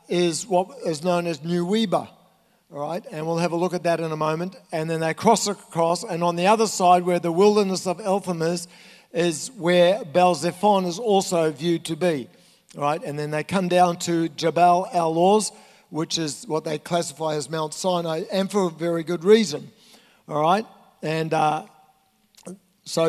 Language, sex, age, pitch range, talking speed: English, male, 60-79, 165-200 Hz, 185 wpm